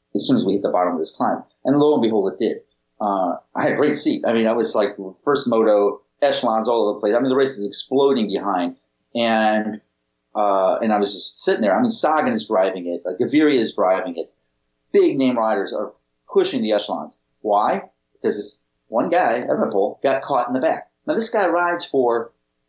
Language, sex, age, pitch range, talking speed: English, male, 40-59, 95-145 Hz, 220 wpm